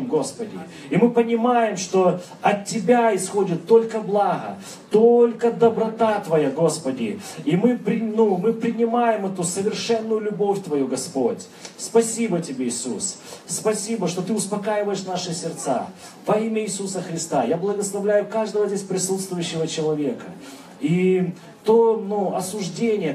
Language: Russian